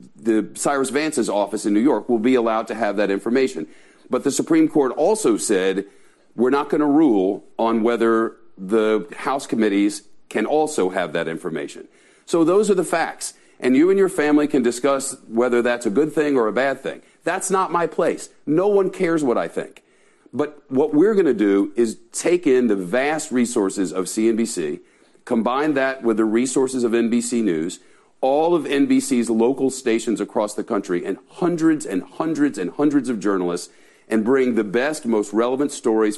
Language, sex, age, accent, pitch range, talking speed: English, male, 50-69, American, 110-175 Hz, 185 wpm